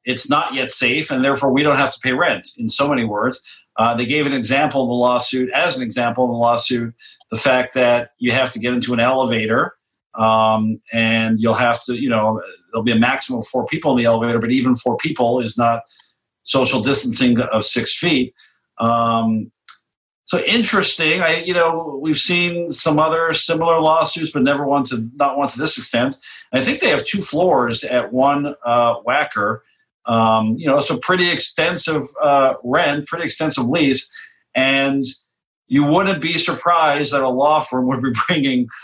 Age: 50-69